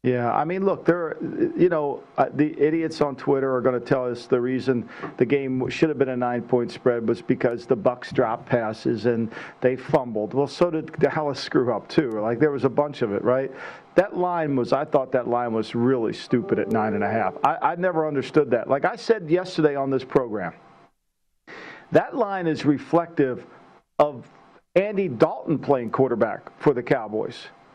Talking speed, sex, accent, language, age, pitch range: 190 wpm, male, American, English, 50-69, 130-180 Hz